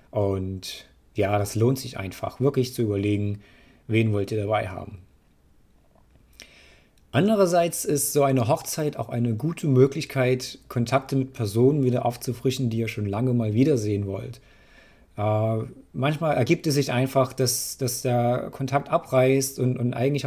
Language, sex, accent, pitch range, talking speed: German, male, German, 110-135 Hz, 145 wpm